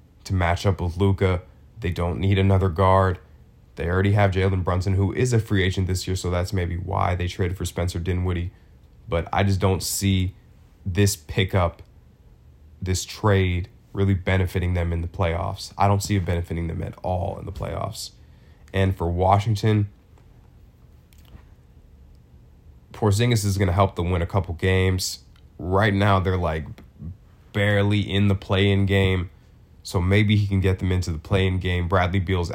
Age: 20-39